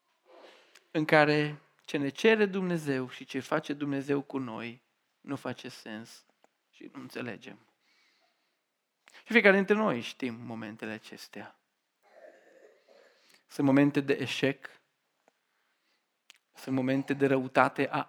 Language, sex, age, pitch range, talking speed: Romanian, male, 40-59, 130-155 Hz, 115 wpm